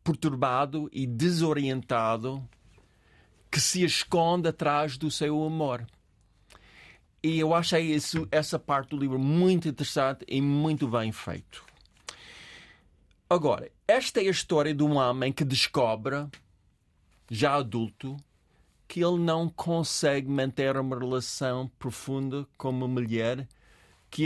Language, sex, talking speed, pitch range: Portuguese, male, 120 wpm, 115-155 Hz